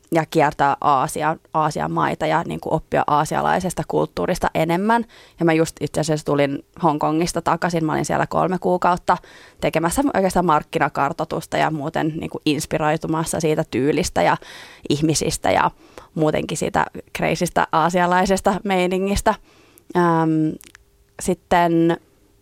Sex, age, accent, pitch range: female, 20-39, native, 150-175 Hz